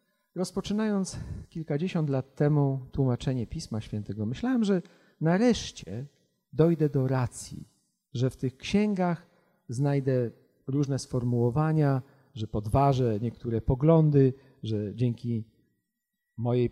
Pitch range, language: 125-175 Hz, Polish